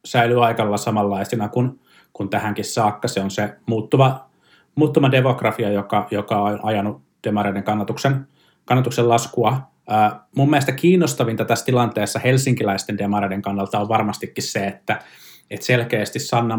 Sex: male